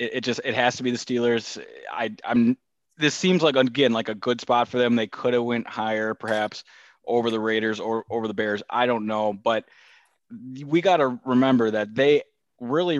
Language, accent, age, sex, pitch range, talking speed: English, American, 20-39, male, 110-130 Hz, 205 wpm